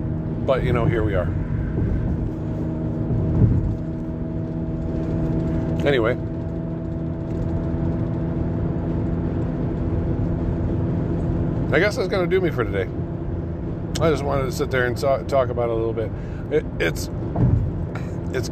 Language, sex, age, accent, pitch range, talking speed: English, male, 50-69, American, 80-120 Hz, 105 wpm